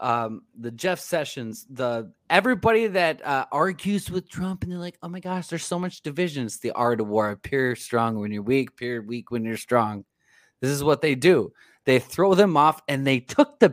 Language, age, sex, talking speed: English, 30-49, male, 215 wpm